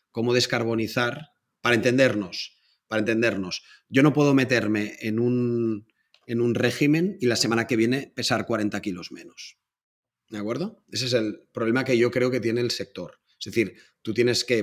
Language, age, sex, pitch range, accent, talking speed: Spanish, 30-49, male, 110-125 Hz, Spanish, 170 wpm